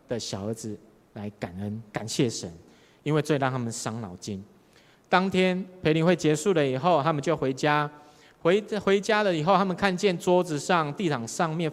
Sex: male